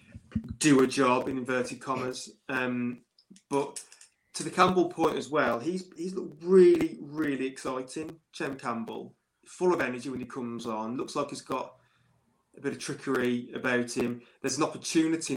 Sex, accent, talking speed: male, British, 165 wpm